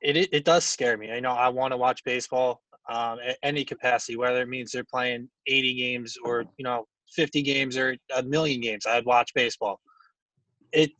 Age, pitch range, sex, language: 20-39, 125-150 Hz, male, English